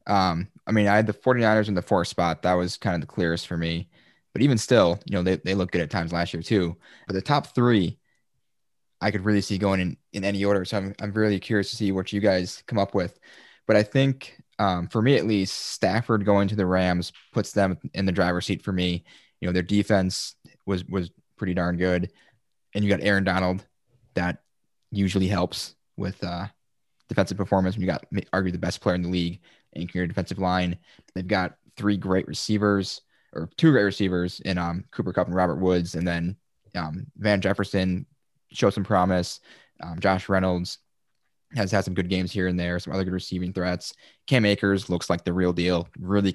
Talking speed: 210 wpm